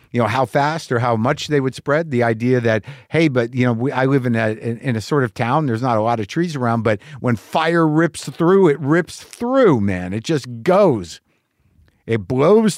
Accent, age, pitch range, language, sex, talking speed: American, 50-69, 110-155 Hz, English, male, 230 wpm